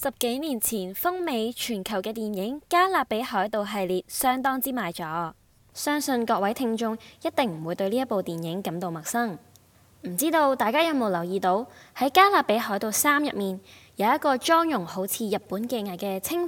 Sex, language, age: female, Chinese, 10-29